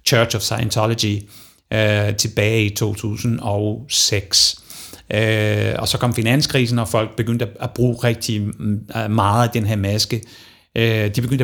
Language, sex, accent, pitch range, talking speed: Danish, male, native, 105-125 Hz, 140 wpm